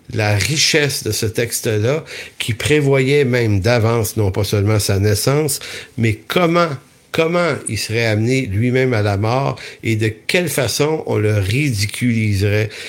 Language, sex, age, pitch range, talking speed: English, male, 60-79, 105-130 Hz, 145 wpm